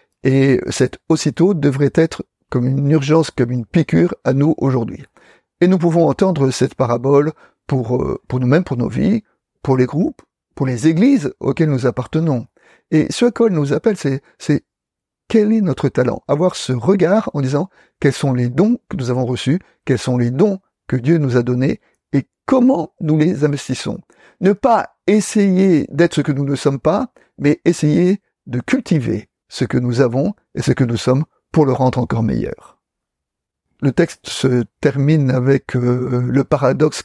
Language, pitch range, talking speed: French, 130-170 Hz, 180 wpm